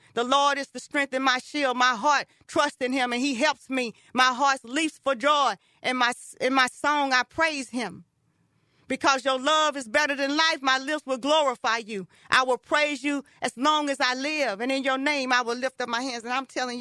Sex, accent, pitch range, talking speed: female, American, 250-310 Hz, 230 wpm